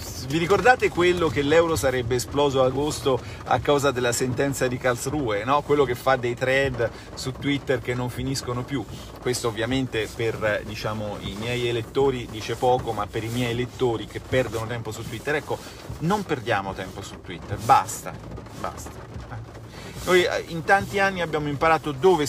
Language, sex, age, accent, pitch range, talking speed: Italian, male, 40-59, native, 110-140 Hz, 165 wpm